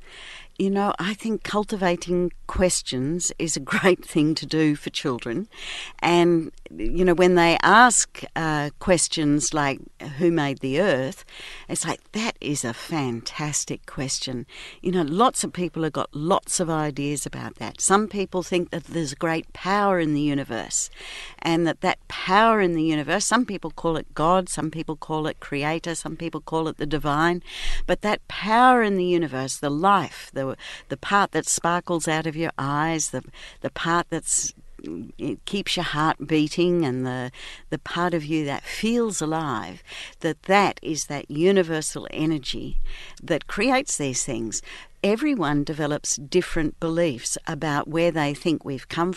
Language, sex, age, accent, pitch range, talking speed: English, female, 60-79, Australian, 150-185 Hz, 165 wpm